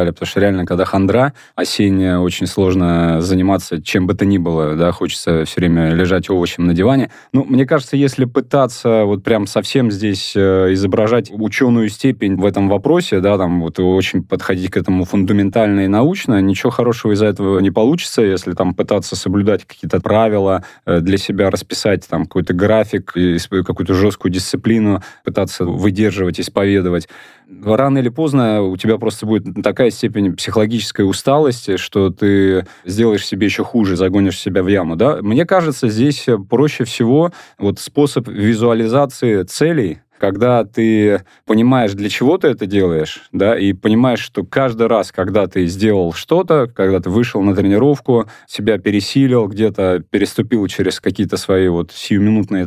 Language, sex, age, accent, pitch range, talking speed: Russian, male, 20-39, native, 95-115 Hz, 155 wpm